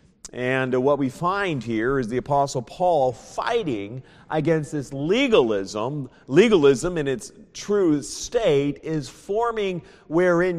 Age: 40-59